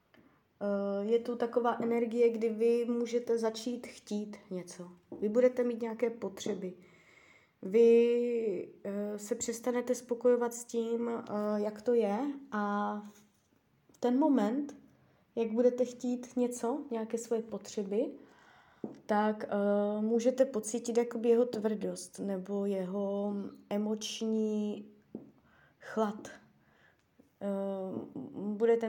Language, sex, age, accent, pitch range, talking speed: Czech, female, 20-39, native, 205-235 Hz, 95 wpm